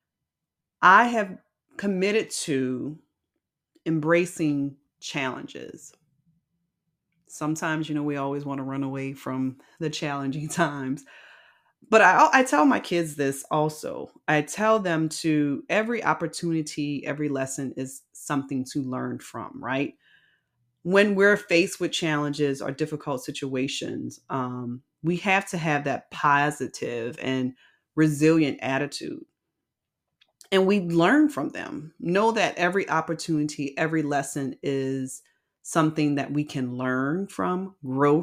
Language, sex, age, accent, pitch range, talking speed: English, female, 30-49, American, 140-175 Hz, 120 wpm